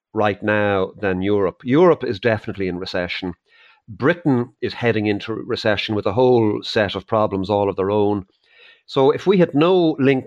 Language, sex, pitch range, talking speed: English, male, 100-120 Hz, 175 wpm